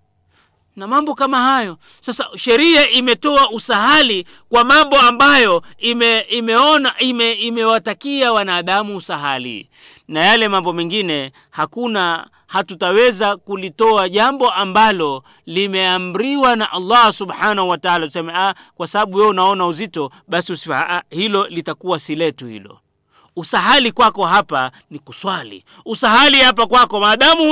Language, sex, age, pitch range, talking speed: Swahili, male, 40-59, 170-270 Hz, 120 wpm